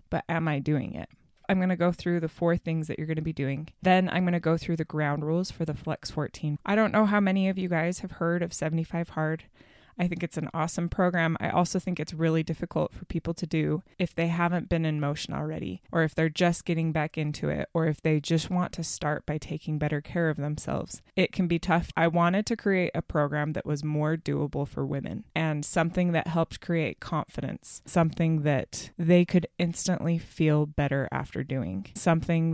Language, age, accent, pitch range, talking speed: English, 20-39, American, 155-175 Hz, 225 wpm